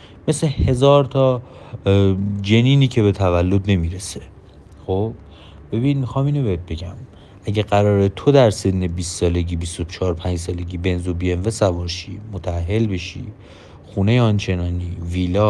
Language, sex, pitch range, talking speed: Persian, male, 90-115 Hz, 120 wpm